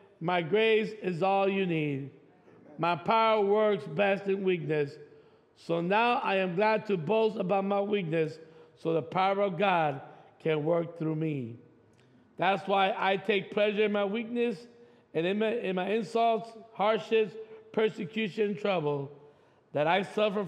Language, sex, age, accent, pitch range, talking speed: English, male, 50-69, American, 160-220 Hz, 150 wpm